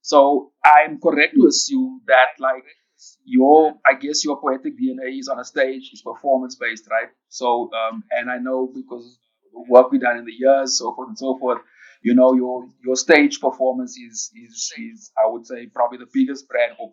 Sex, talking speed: male, 200 wpm